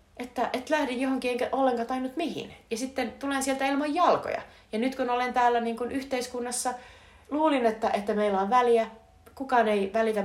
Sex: female